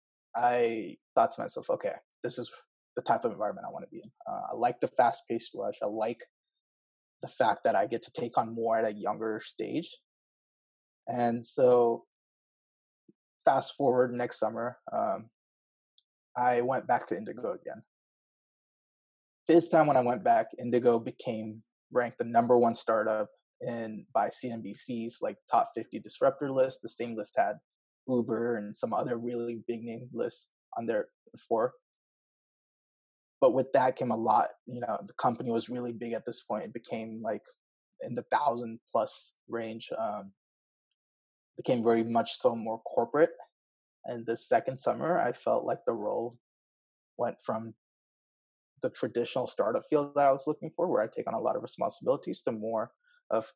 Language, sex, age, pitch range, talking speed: Telugu, male, 20-39, 115-130 Hz, 165 wpm